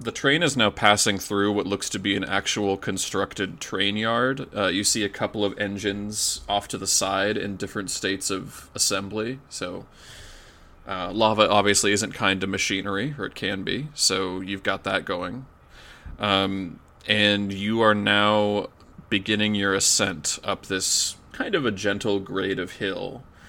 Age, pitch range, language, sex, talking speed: 20-39, 95-105 Hz, English, male, 165 wpm